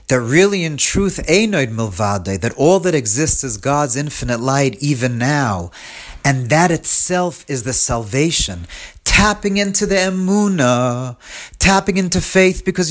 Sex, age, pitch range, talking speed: male, 40-59, 130-175 Hz, 130 wpm